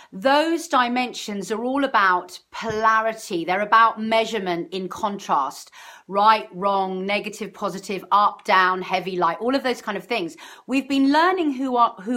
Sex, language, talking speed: female, English, 145 wpm